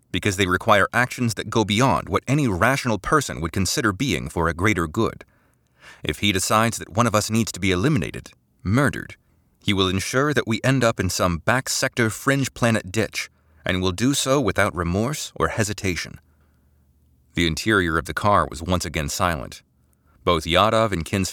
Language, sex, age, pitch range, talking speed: English, male, 30-49, 85-115 Hz, 175 wpm